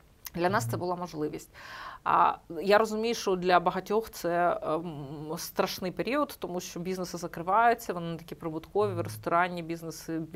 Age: 30-49